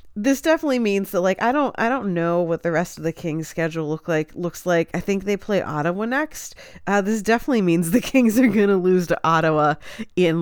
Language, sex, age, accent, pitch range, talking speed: English, female, 30-49, American, 160-220 Hz, 230 wpm